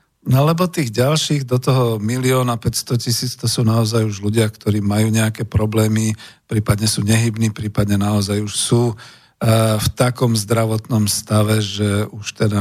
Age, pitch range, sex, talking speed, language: 50-69, 110-130 Hz, male, 155 wpm, Slovak